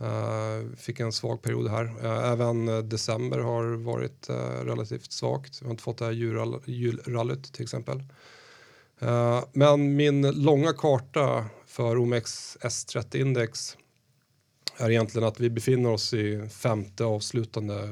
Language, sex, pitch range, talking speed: Swedish, male, 110-125 Hz, 125 wpm